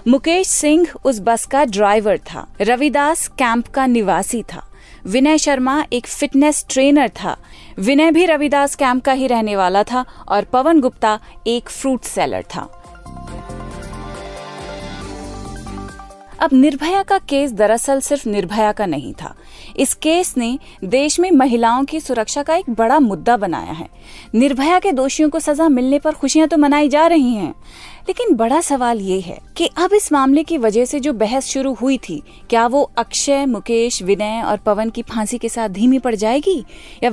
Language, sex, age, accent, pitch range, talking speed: Hindi, female, 30-49, native, 215-290 Hz, 165 wpm